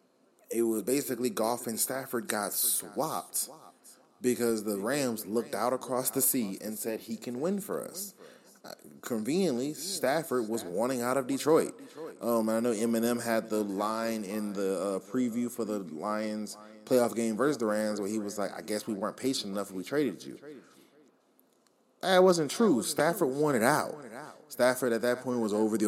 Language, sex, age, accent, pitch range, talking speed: English, male, 20-39, American, 105-130 Hz, 180 wpm